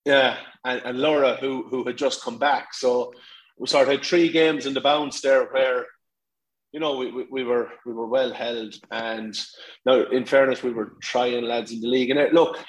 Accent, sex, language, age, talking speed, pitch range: Irish, male, English, 30-49, 215 wpm, 115-145 Hz